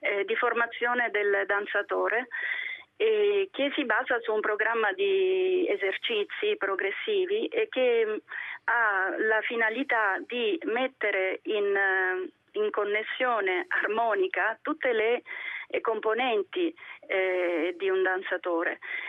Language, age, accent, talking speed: Italian, 30-49, native, 90 wpm